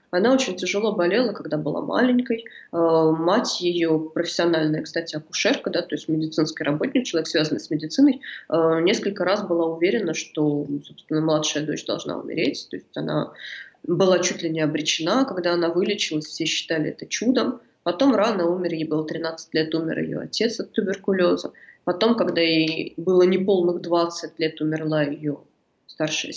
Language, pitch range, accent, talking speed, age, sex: Russian, 160-205 Hz, native, 150 wpm, 20-39, female